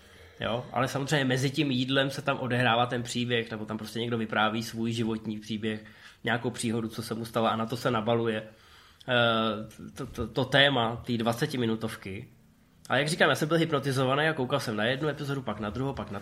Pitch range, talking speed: 115-150 Hz, 195 wpm